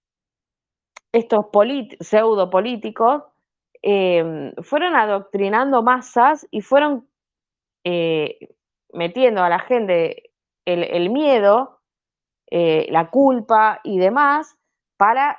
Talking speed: 80 wpm